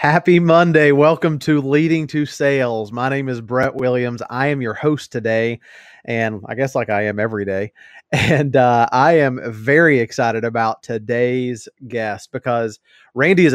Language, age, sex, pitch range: English, 30-49, male, 110-135 Hz